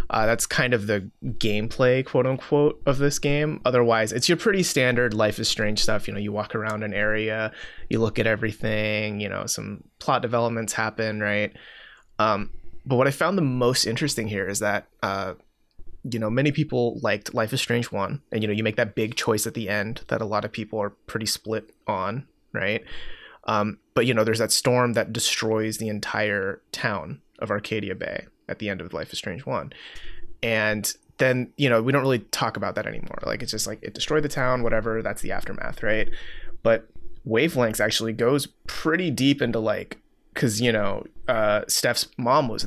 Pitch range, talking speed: 110-135 Hz, 200 wpm